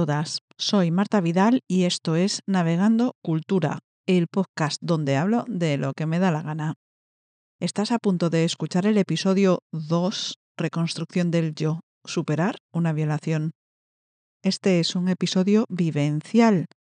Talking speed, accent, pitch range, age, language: 135 wpm, Spanish, 165-210 Hz, 50-69, Spanish